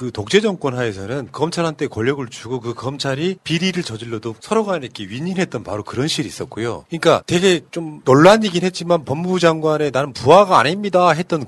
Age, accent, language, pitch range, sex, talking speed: 40-59, Korean, English, 120-175 Hz, male, 150 wpm